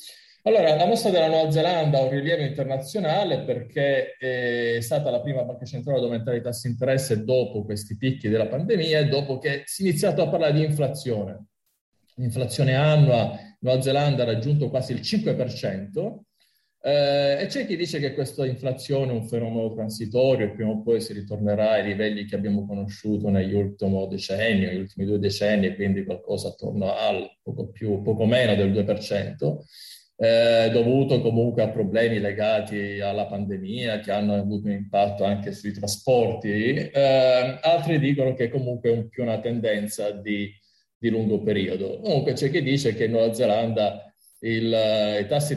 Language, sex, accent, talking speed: Italian, male, native, 170 wpm